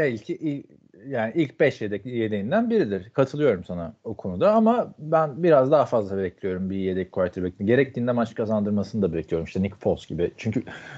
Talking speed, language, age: 165 wpm, Turkish, 40-59